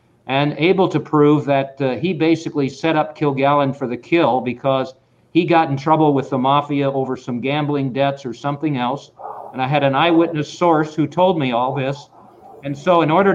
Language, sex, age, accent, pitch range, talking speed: English, male, 50-69, American, 130-155 Hz, 200 wpm